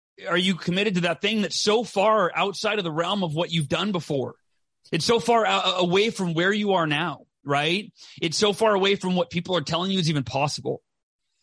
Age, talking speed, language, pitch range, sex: 30-49, 215 wpm, English, 135-185 Hz, male